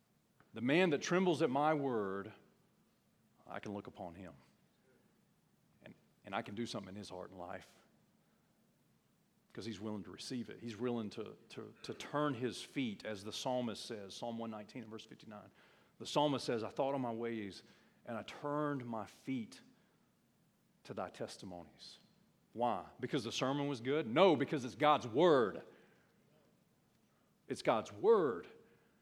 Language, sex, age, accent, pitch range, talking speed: English, male, 40-59, American, 125-195 Hz, 155 wpm